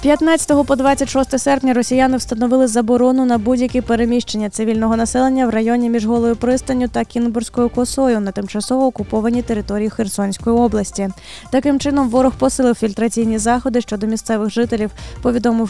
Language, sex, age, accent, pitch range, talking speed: Ukrainian, female, 20-39, native, 220-255 Hz, 140 wpm